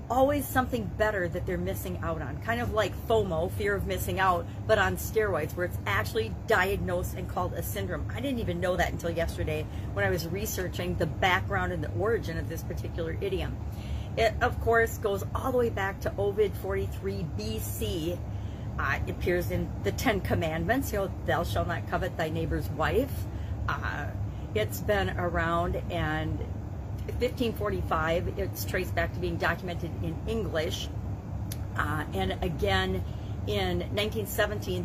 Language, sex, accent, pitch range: English, female, American, 95-110 Hz